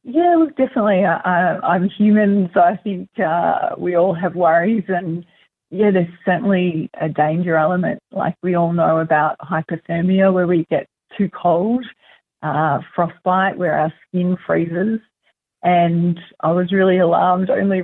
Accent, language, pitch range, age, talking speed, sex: Australian, English, 165-190 Hz, 40-59, 140 wpm, female